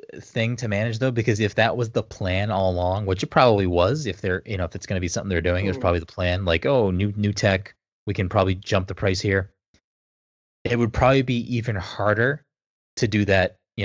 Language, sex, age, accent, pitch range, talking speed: English, male, 20-39, American, 90-110 Hz, 240 wpm